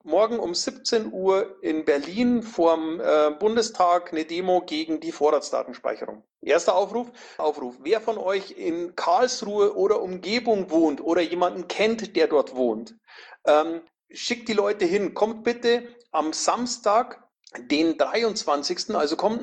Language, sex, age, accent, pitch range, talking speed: German, male, 40-59, German, 165-225 Hz, 135 wpm